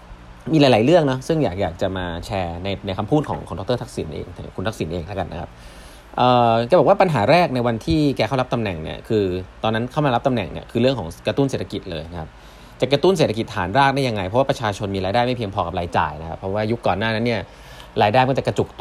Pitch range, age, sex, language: 95-125 Hz, 20-39, male, Thai